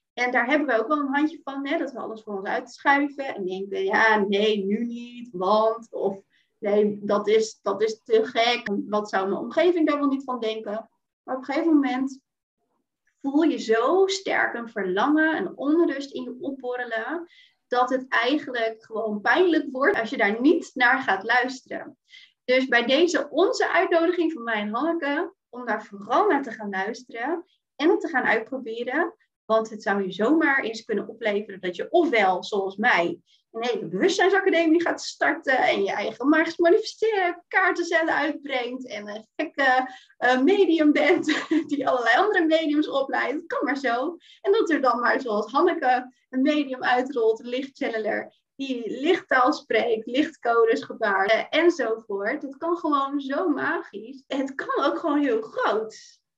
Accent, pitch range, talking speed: Dutch, 225-320 Hz, 165 wpm